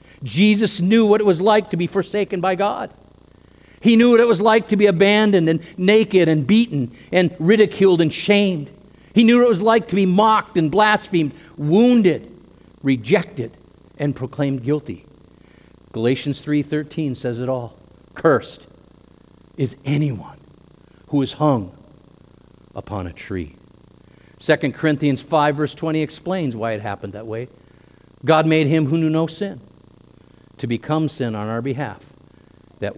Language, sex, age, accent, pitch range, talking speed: English, male, 50-69, American, 135-205 Hz, 150 wpm